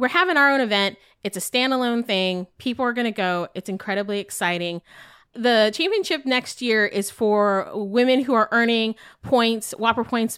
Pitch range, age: 195-250 Hz, 30-49